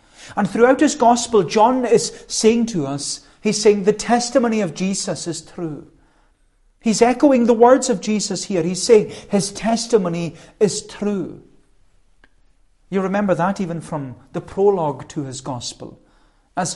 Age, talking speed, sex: 40-59, 145 wpm, male